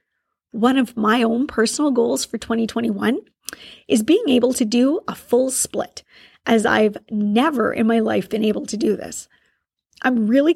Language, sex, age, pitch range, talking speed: English, female, 40-59, 215-260 Hz, 165 wpm